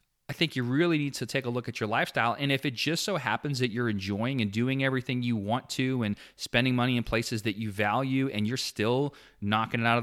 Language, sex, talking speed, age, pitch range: English, male, 250 wpm, 30-49, 110-135 Hz